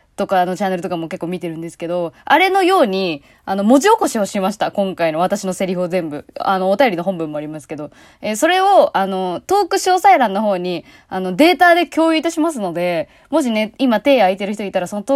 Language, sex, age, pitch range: Japanese, female, 20-39, 185-280 Hz